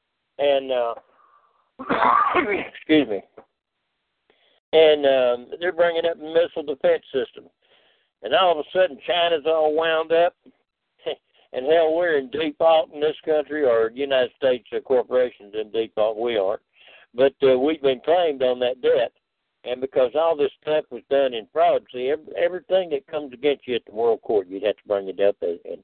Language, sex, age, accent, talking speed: English, male, 60-79, American, 170 wpm